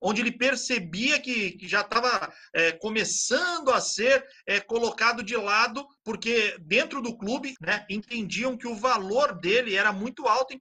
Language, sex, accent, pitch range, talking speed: Portuguese, male, Brazilian, 180-230 Hz, 145 wpm